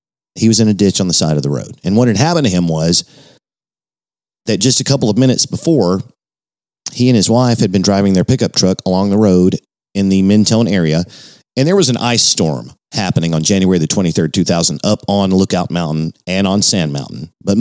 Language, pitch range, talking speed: English, 95-120 Hz, 215 wpm